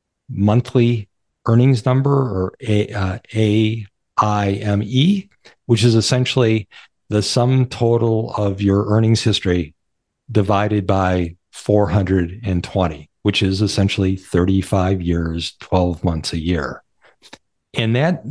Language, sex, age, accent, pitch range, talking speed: English, male, 50-69, American, 95-120 Hz, 100 wpm